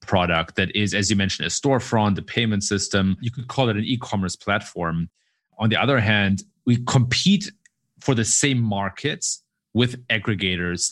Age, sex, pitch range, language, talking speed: 30-49, male, 95-120 Hz, English, 165 wpm